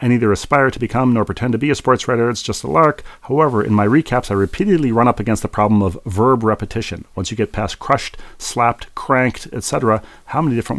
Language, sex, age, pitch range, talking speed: English, male, 40-59, 95-120 Hz, 230 wpm